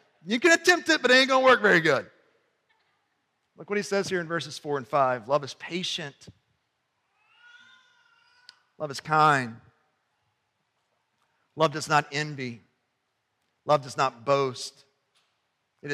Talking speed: 140 wpm